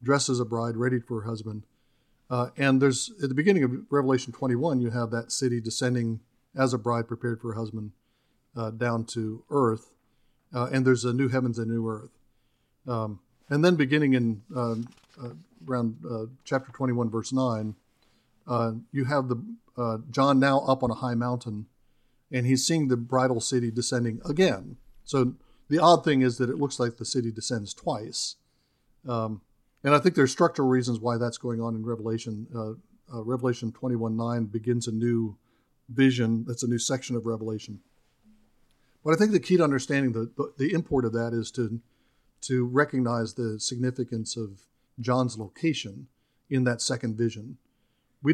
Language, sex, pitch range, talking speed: English, male, 115-130 Hz, 175 wpm